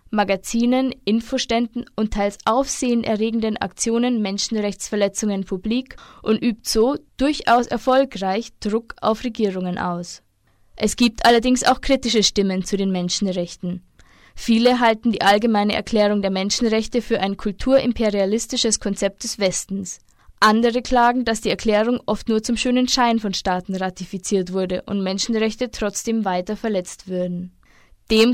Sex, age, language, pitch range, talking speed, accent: female, 20-39, German, 195-235 Hz, 125 wpm, German